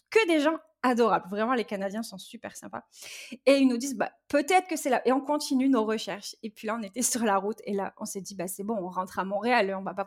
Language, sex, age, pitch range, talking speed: French, female, 20-39, 220-300 Hz, 285 wpm